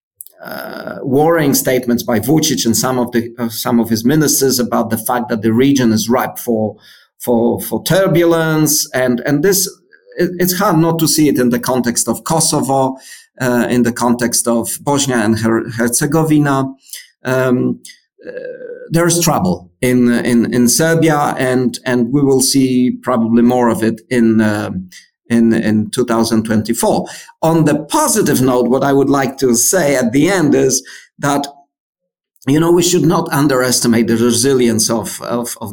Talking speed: 165 wpm